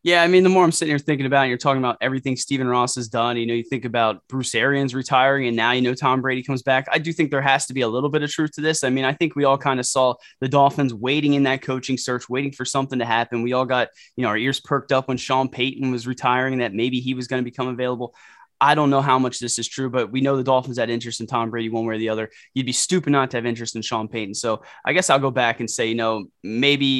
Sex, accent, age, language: male, American, 20-39, English